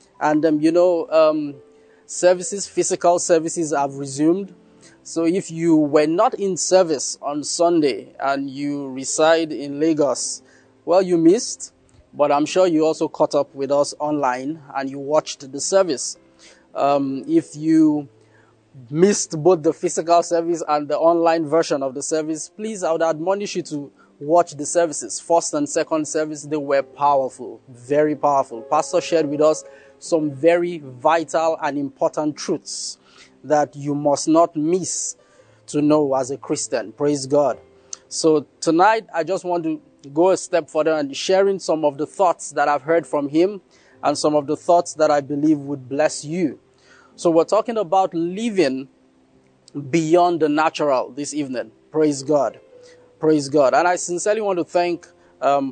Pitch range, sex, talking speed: 140-170 Hz, male, 160 wpm